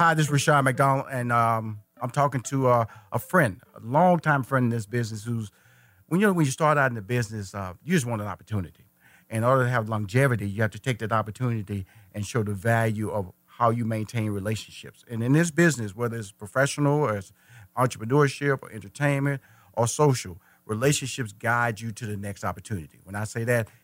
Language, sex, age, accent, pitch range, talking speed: English, male, 40-59, American, 105-125 Hz, 200 wpm